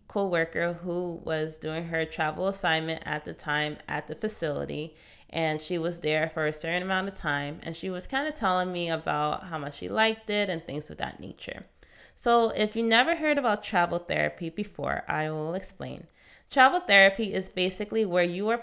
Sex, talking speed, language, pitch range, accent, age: female, 195 wpm, English, 160-195 Hz, American, 20-39